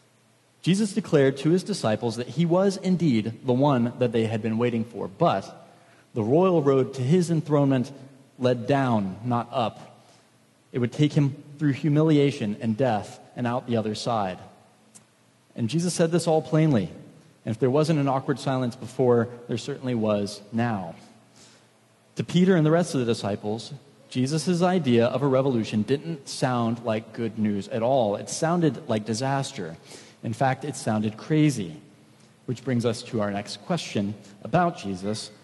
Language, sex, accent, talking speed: English, male, American, 165 wpm